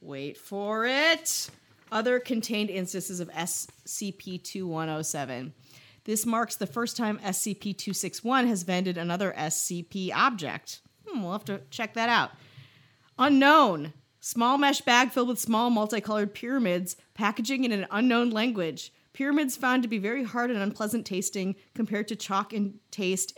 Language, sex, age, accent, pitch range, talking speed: English, female, 30-49, American, 180-225 Hz, 140 wpm